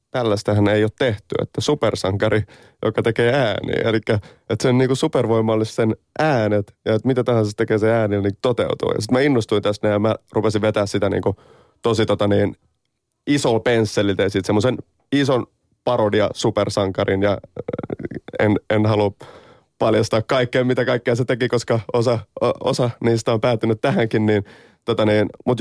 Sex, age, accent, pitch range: male, 30-49, native, 105-125 Hz